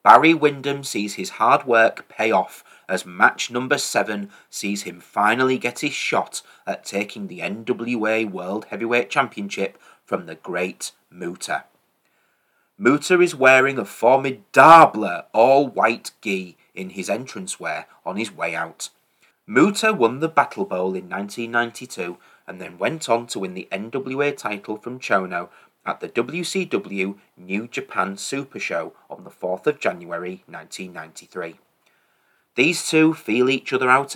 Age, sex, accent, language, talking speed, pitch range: 30-49, male, British, English, 140 wpm, 100-140 Hz